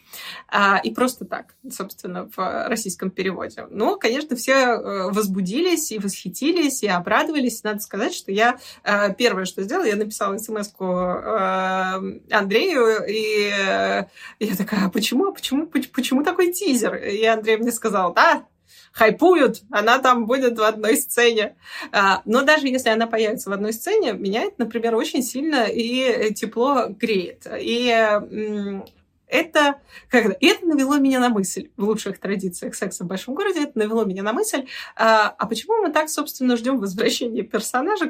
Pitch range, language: 210-260 Hz, Russian